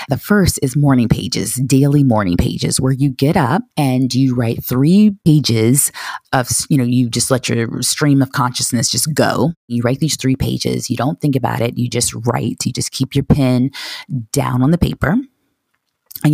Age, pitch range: 30-49, 120-145 Hz